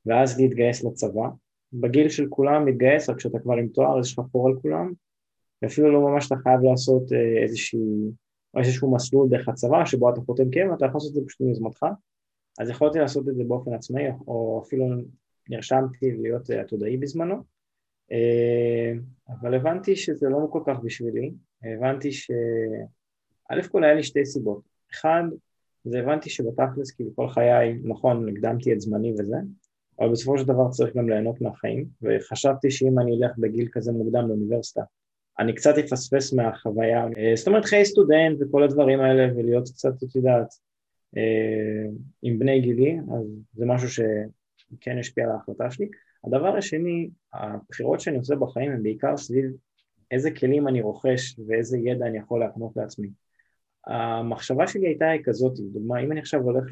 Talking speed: 160 wpm